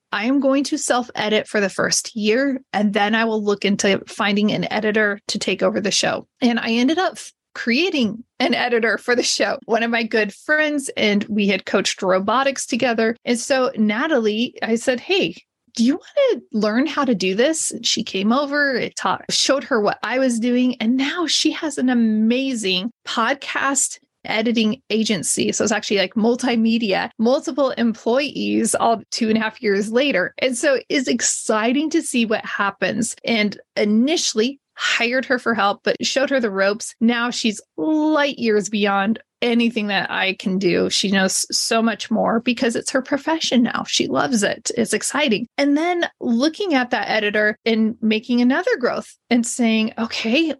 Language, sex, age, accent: English, female, 20-39, American